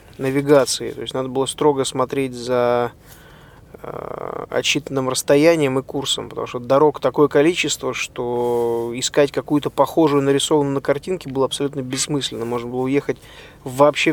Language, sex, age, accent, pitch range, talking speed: Russian, male, 20-39, native, 130-150 Hz, 135 wpm